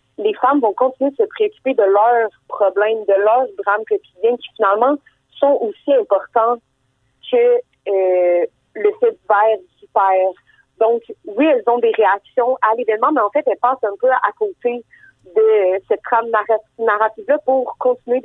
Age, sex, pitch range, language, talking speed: 30-49, female, 200-260 Hz, French, 170 wpm